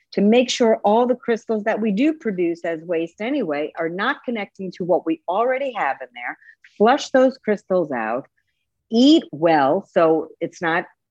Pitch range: 185-250 Hz